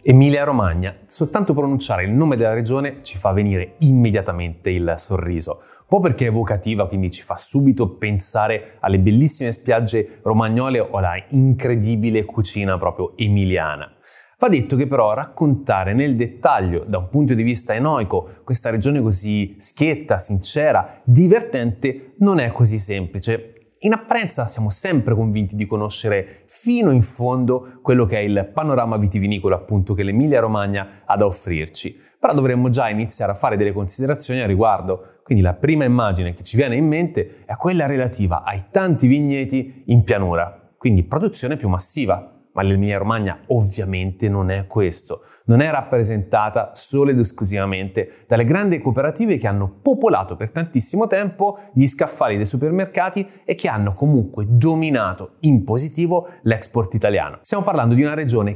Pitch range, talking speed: 100-140 Hz, 155 wpm